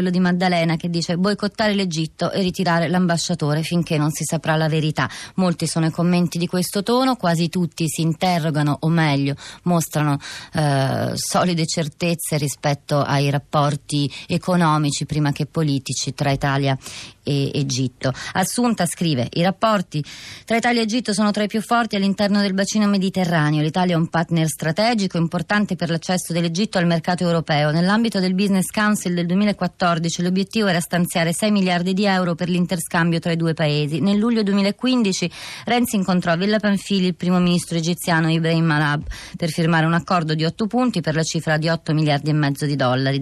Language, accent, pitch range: Italian, native, 155-190 Hz